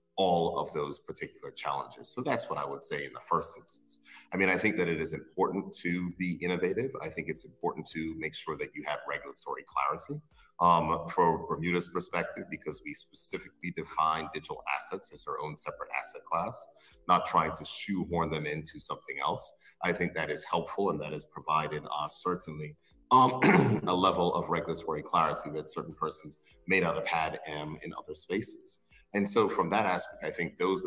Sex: male